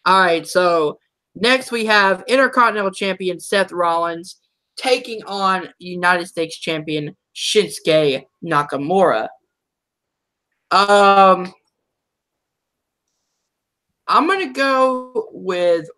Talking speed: 85 wpm